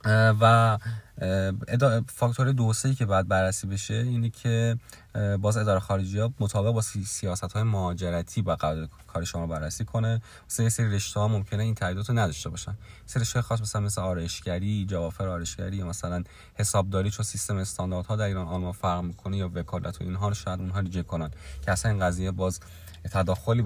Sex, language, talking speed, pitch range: male, Persian, 165 wpm, 90-115 Hz